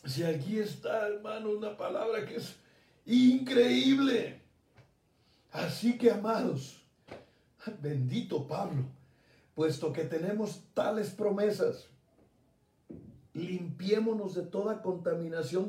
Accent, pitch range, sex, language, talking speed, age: Mexican, 170-215 Hz, male, Spanish, 90 wpm, 60-79